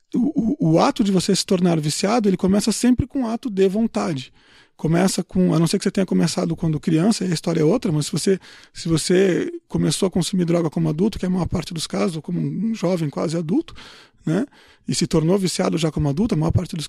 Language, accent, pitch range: Portuguese, Brazilian, 170-225 Hz